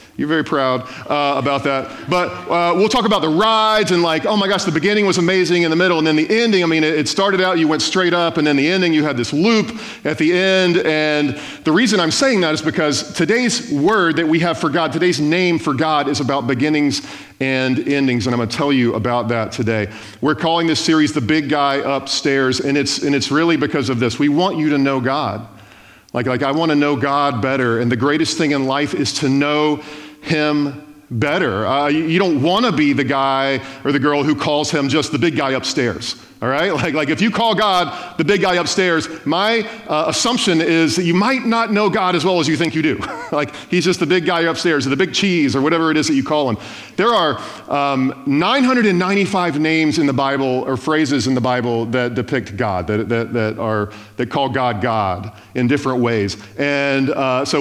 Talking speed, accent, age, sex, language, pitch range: 230 wpm, American, 40-59, male, English, 135-170 Hz